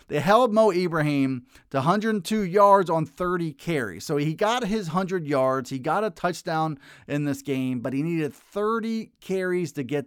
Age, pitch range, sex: 30-49, 135-165 Hz, male